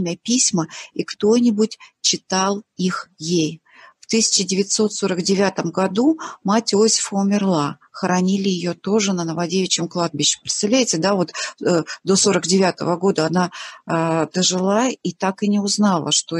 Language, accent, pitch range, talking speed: Russian, native, 175-215 Hz, 125 wpm